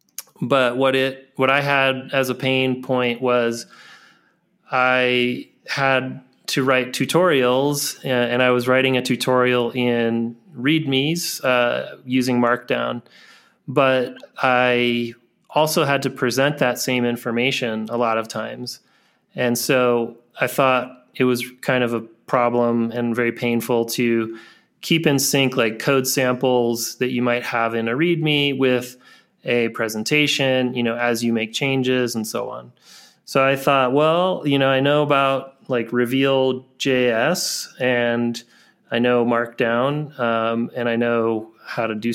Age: 30-49